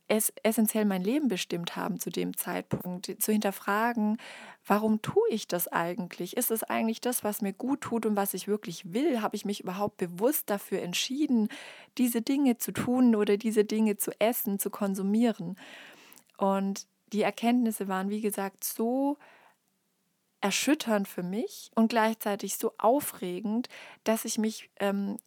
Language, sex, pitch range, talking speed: German, female, 200-235 Hz, 155 wpm